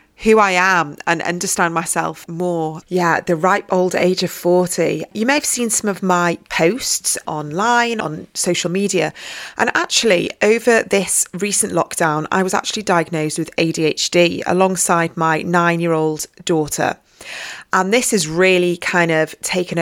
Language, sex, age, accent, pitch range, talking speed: English, female, 30-49, British, 170-215 Hz, 150 wpm